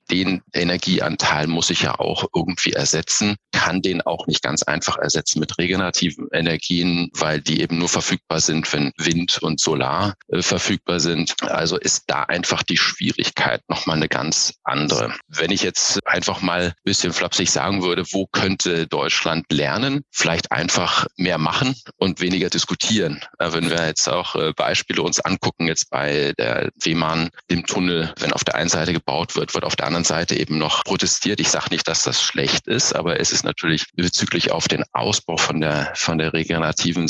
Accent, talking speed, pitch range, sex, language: German, 175 wpm, 80-90 Hz, male, Danish